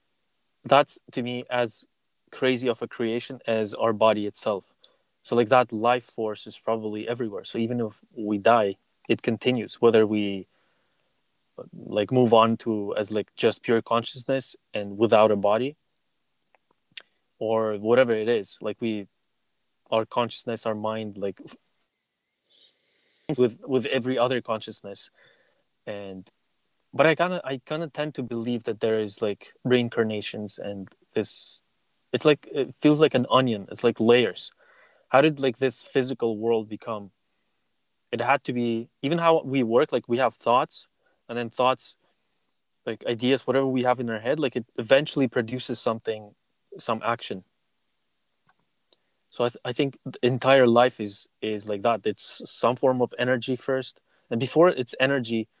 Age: 20-39